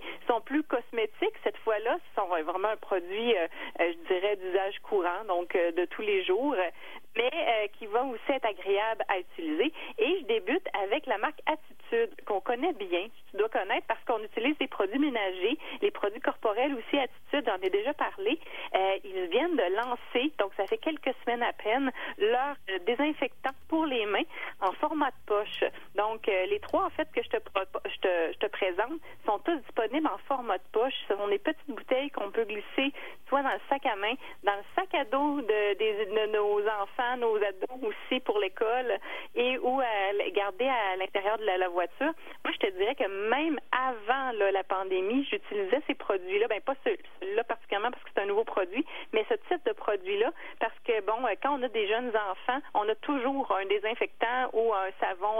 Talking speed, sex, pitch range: 195 wpm, female, 205-325 Hz